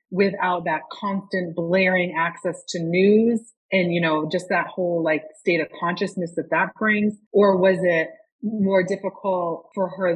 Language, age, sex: English, 30-49, female